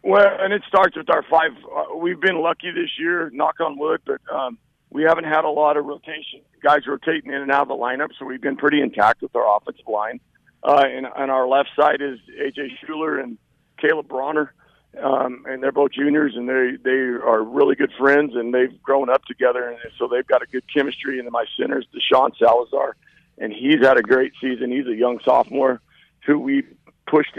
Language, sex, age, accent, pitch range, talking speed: English, male, 50-69, American, 125-150 Hz, 215 wpm